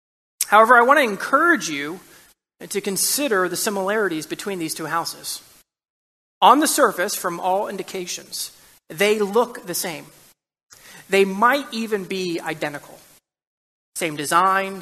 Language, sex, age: English, male, 30-49